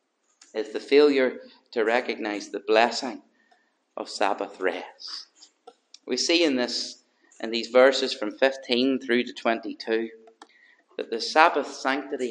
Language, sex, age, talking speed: English, male, 40-59, 125 wpm